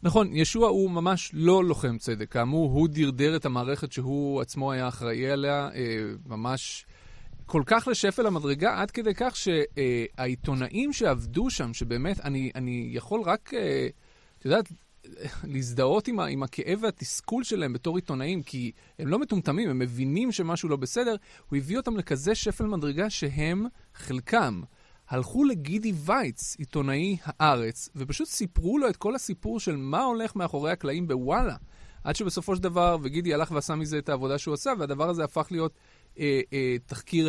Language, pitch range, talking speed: Hebrew, 130-190 Hz, 155 wpm